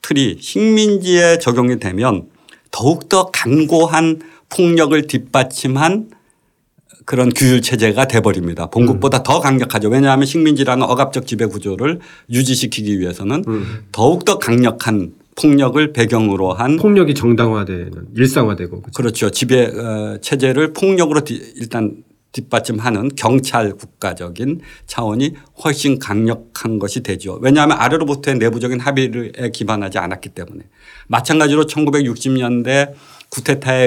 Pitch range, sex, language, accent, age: 110-140 Hz, male, Korean, native, 50-69